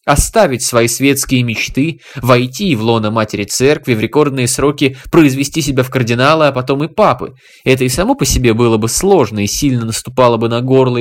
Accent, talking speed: native, 185 wpm